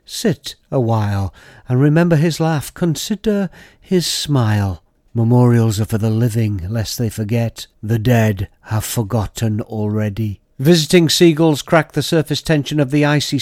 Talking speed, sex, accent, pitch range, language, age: 145 wpm, male, British, 115-140 Hz, English, 50-69